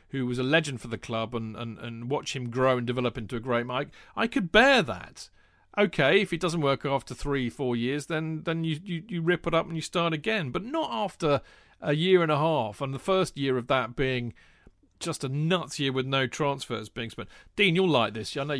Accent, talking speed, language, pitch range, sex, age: British, 240 wpm, English, 115-155 Hz, male, 40-59